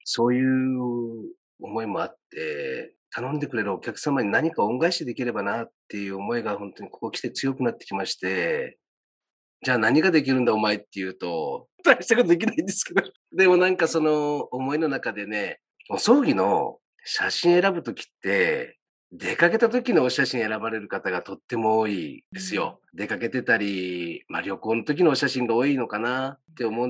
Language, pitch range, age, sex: Japanese, 115-160 Hz, 40-59, male